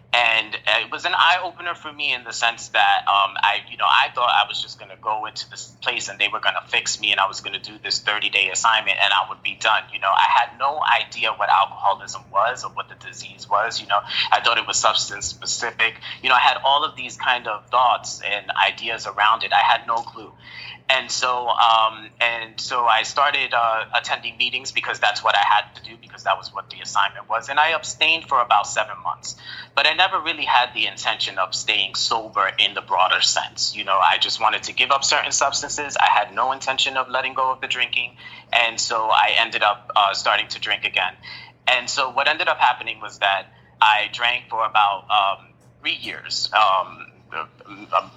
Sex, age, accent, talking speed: male, 30-49, American, 225 wpm